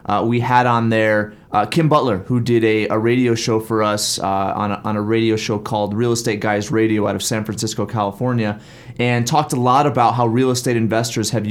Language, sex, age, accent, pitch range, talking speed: English, male, 30-49, American, 110-130 Hz, 225 wpm